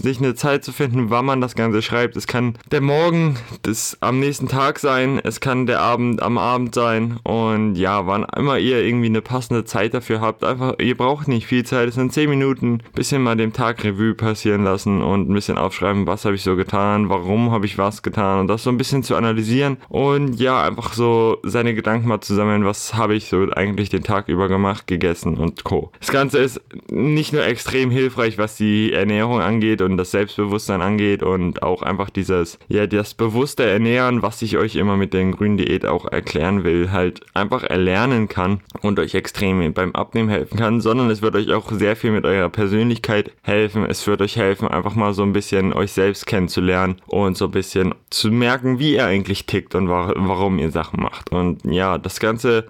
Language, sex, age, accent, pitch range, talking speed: German, male, 20-39, German, 100-120 Hz, 210 wpm